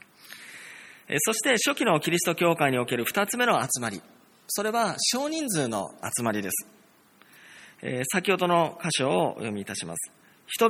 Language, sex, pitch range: Japanese, male, 125-200 Hz